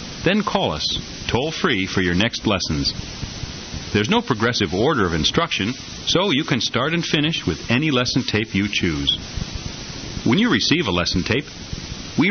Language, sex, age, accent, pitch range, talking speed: English, male, 40-59, American, 95-135 Hz, 165 wpm